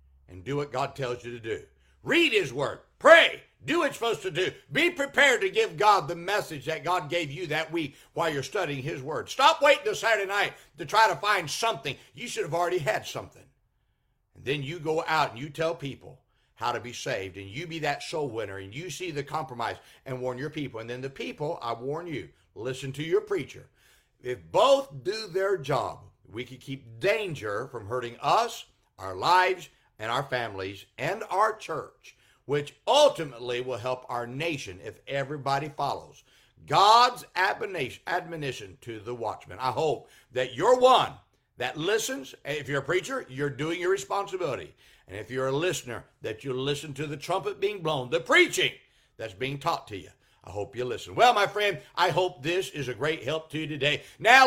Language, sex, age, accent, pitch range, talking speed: English, male, 60-79, American, 125-200 Hz, 195 wpm